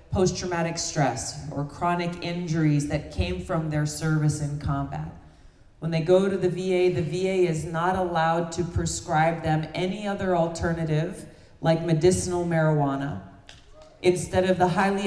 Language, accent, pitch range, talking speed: English, American, 145-175 Hz, 145 wpm